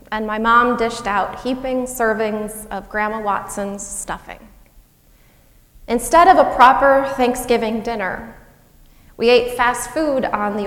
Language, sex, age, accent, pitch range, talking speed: English, female, 30-49, American, 205-250 Hz, 130 wpm